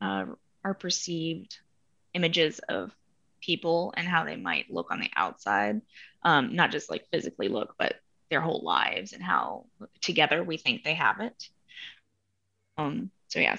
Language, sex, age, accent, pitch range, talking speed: English, female, 20-39, American, 175-215 Hz, 155 wpm